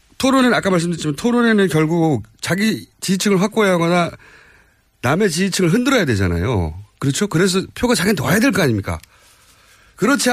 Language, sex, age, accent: Korean, male, 40-59, native